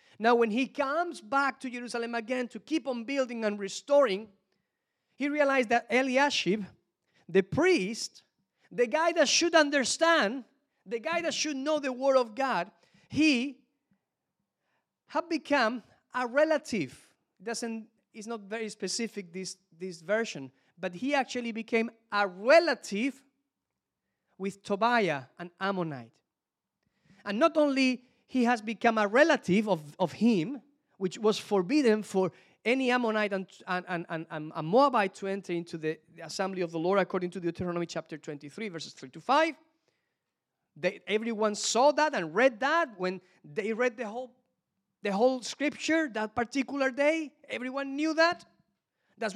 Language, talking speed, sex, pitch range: English, 145 wpm, male, 195-275 Hz